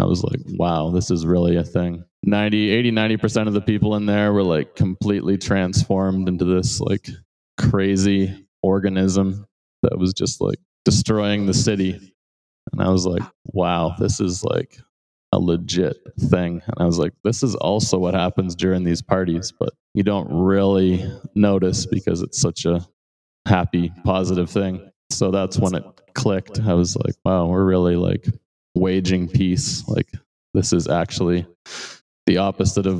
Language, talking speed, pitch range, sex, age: English, 165 wpm, 90-105 Hz, male, 20-39